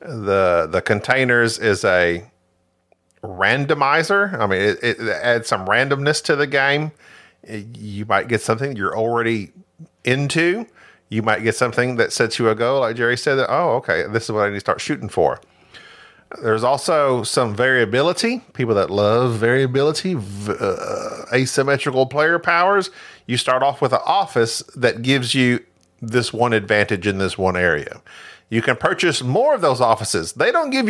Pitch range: 115-170 Hz